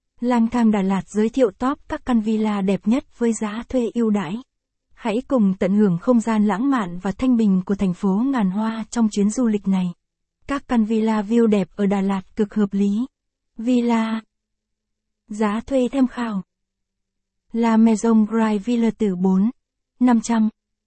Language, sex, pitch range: Vietnamese, female, 205-235 Hz